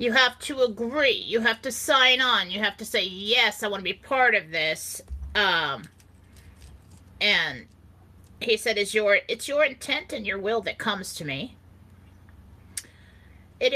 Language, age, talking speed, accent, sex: English, 30-49, 165 wpm, American, female